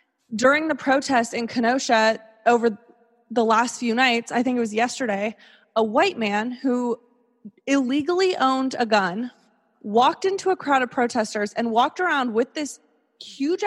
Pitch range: 225-280 Hz